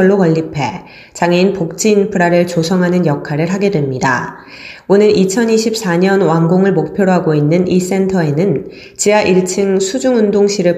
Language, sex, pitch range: Korean, female, 165-200 Hz